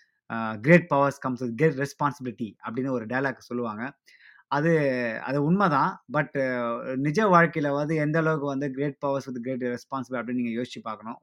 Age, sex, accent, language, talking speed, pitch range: 20-39, male, native, Tamil, 155 wpm, 130-165 Hz